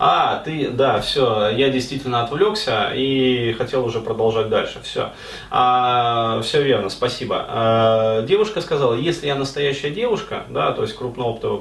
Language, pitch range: Russian, 115-145 Hz